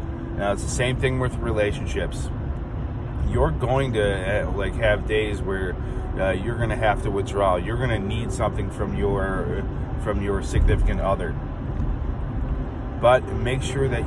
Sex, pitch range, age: male, 95-120 Hz, 30-49